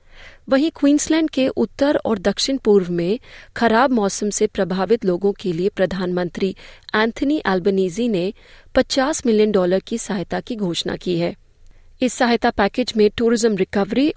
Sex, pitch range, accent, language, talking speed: female, 190-235 Hz, native, Hindi, 145 wpm